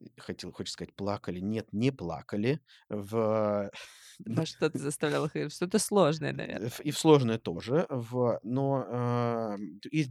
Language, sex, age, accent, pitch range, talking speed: Russian, male, 30-49, native, 95-120 Hz, 115 wpm